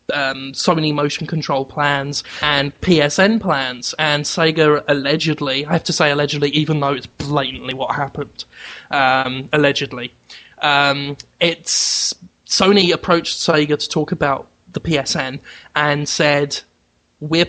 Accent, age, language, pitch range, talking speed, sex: British, 20-39, English, 140-165 Hz, 125 wpm, male